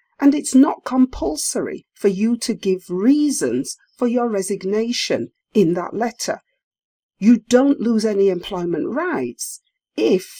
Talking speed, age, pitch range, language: 125 wpm, 50-69, 190-270 Hz, English